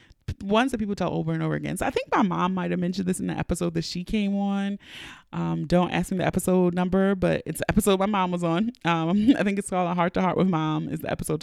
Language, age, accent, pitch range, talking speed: English, 20-39, American, 165-215 Hz, 280 wpm